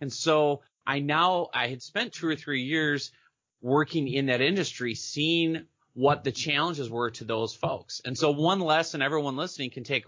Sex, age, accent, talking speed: male, 30-49, American, 185 wpm